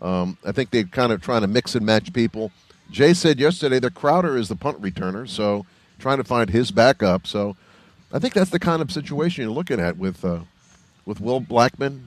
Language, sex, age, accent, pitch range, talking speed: English, male, 50-69, American, 105-145 Hz, 215 wpm